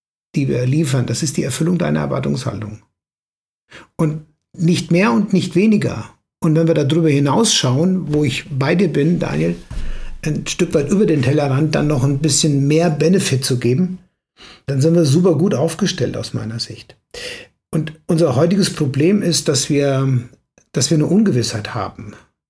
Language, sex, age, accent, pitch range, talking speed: German, male, 60-79, German, 140-180 Hz, 165 wpm